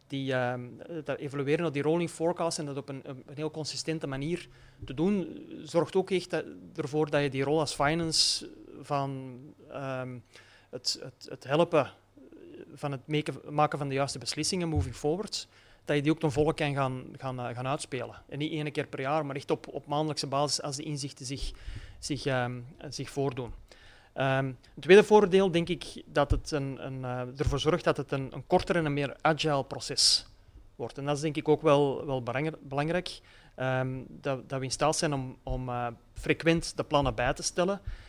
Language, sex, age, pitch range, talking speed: Dutch, male, 30-49, 130-155 Hz, 185 wpm